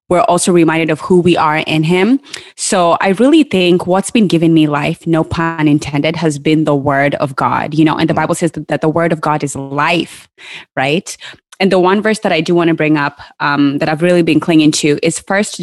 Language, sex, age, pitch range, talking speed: English, female, 20-39, 155-185 Hz, 235 wpm